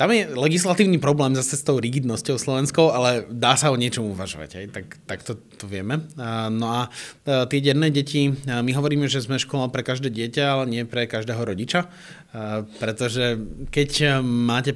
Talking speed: 170 wpm